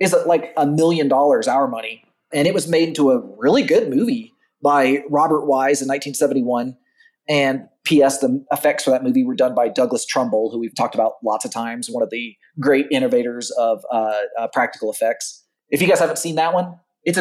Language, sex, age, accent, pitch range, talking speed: English, male, 30-49, American, 130-185 Hz, 200 wpm